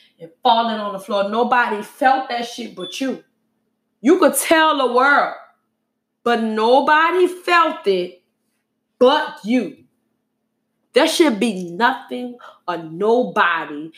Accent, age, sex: American, 20-39, female